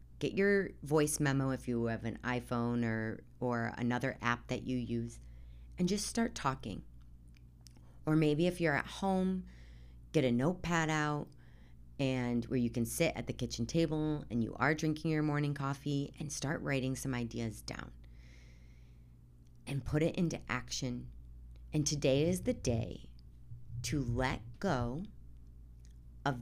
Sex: female